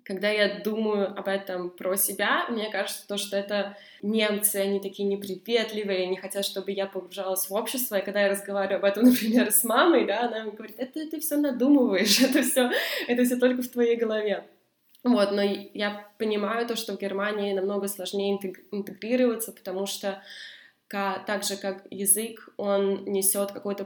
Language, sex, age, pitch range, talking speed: Russian, female, 20-39, 195-215 Hz, 165 wpm